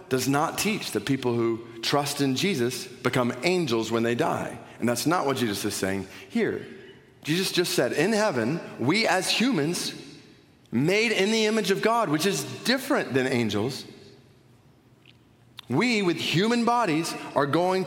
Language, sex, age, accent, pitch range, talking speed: English, male, 40-59, American, 120-180 Hz, 160 wpm